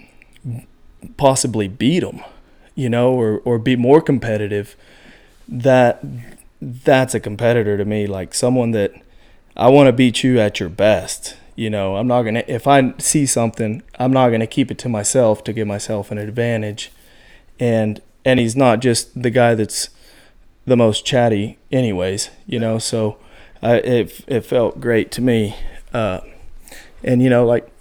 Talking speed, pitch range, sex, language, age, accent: 160 wpm, 110-125 Hz, male, English, 20-39, American